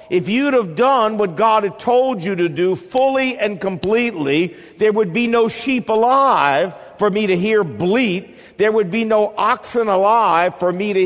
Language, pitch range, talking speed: English, 145-220 Hz, 185 wpm